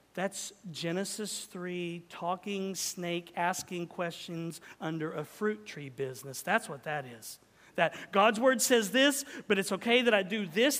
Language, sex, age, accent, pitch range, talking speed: English, male, 40-59, American, 185-280 Hz, 155 wpm